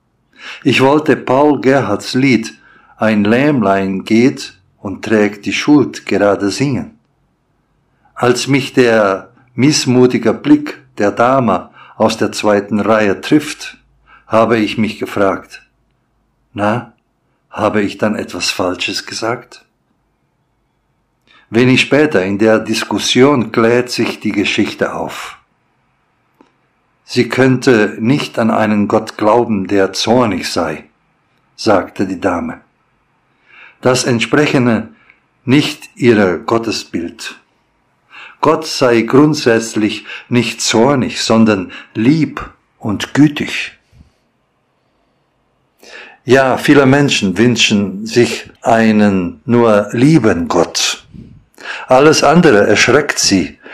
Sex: male